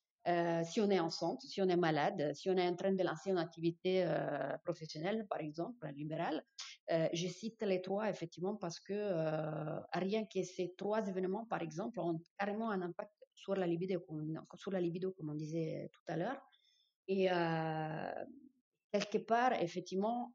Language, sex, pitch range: French, female, 165-195 Hz